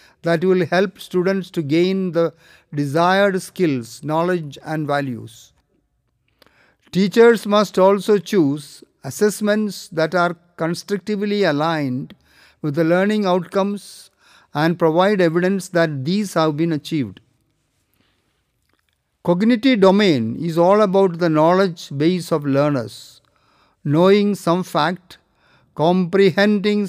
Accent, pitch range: Indian, 155-195 Hz